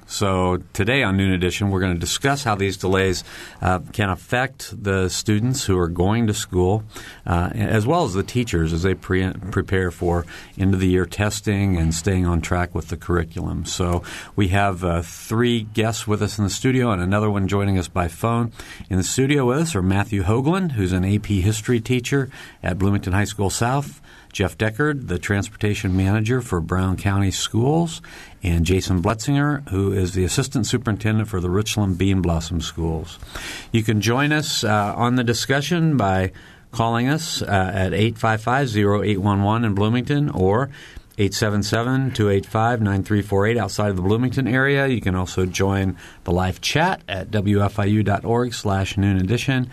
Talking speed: 165 wpm